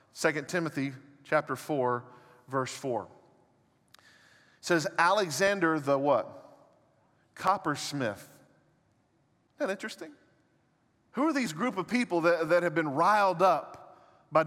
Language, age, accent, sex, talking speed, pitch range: English, 40-59, American, male, 115 wpm, 125-175 Hz